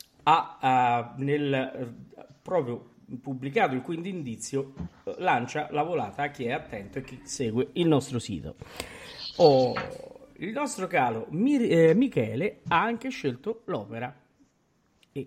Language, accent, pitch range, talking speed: Italian, native, 115-155 Hz, 130 wpm